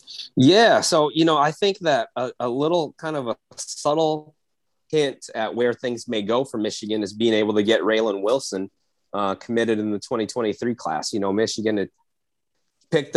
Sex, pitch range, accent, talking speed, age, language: male, 100-120 Hz, American, 180 wpm, 30-49, English